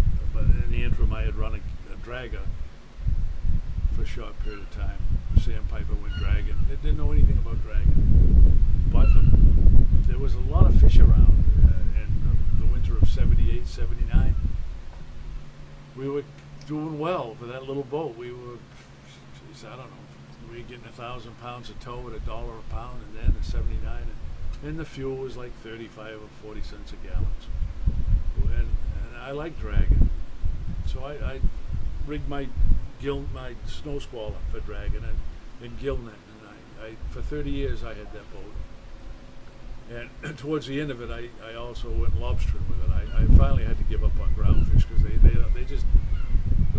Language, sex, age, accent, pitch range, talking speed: English, male, 50-69, American, 80-120 Hz, 190 wpm